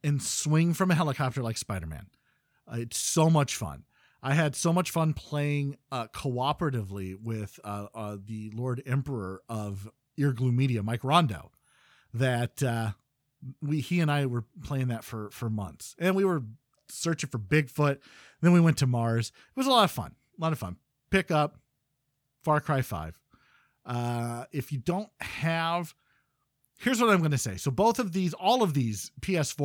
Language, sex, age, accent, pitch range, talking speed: English, male, 40-59, American, 120-165 Hz, 180 wpm